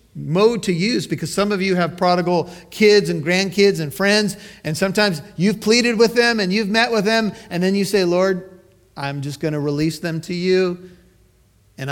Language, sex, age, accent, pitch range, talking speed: English, male, 40-59, American, 120-180 Hz, 195 wpm